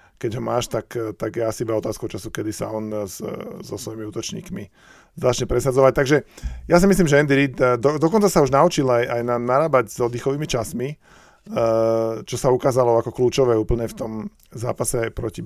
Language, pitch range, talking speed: Slovak, 110-125 Hz, 190 wpm